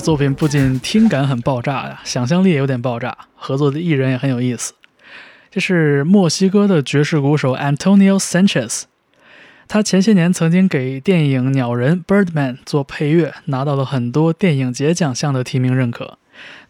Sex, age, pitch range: male, 20-39, 140-180 Hz